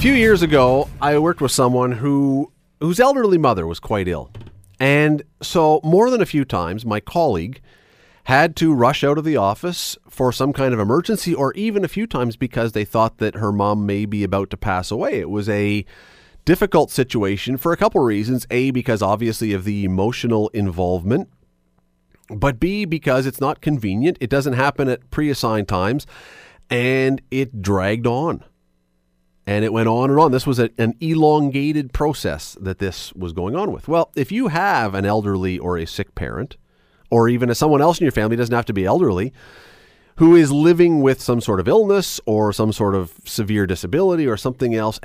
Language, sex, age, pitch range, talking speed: English, male, 40-59, 105-150 Hz, 190 wpm